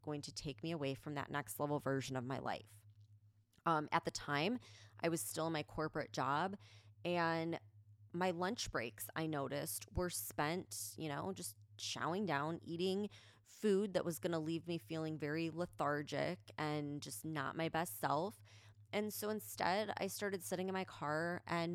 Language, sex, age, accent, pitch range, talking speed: English, female, 20-39, American, 110-175 Hz, 175 wpm